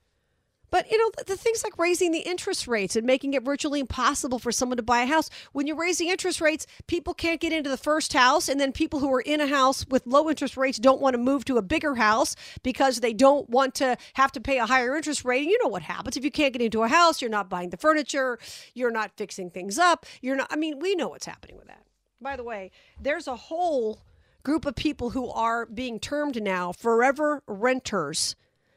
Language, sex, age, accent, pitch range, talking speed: English, female, 50-69, American, 215-290 Hz, 235 wpm